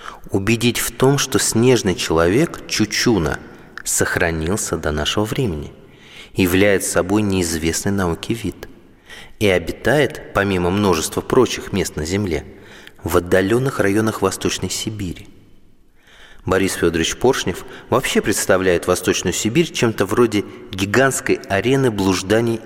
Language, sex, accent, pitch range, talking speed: Russian, male, native, 90-135 Hz, 110 wpm